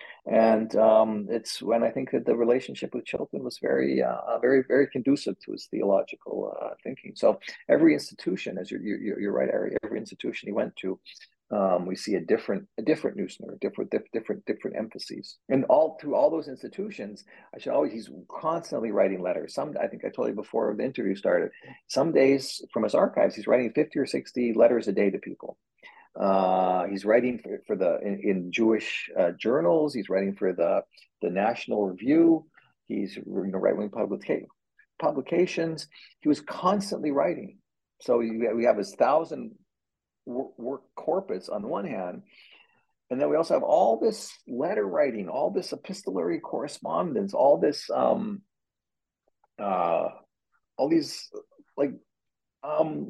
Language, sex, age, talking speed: English, male, 40-59, 165 wpm